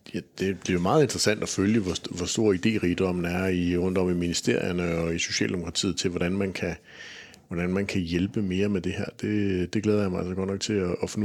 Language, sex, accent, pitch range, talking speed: Danish, male, native, 90-100 Hz, 245 wpm